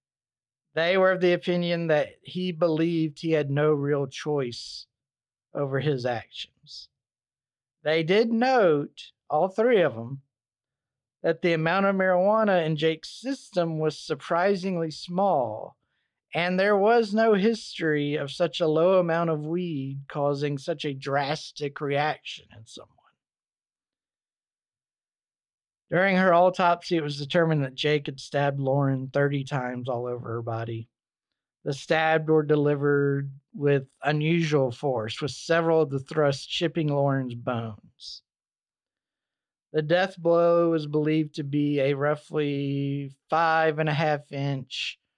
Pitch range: 140-170 Hz